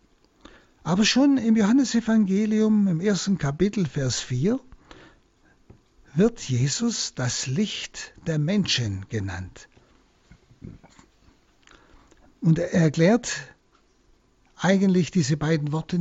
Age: 60-79